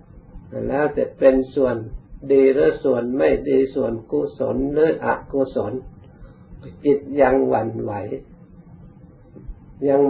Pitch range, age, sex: 125-140 Hz, 60-79, male